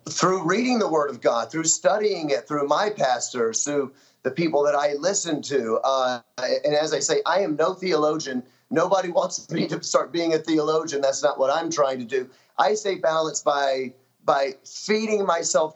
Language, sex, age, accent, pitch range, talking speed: English, male, 30-49, American, 140-175 Hz, 190 wpm